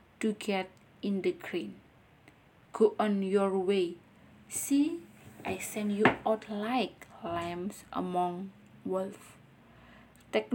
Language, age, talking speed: Indonesian, 20-39, 110 wpm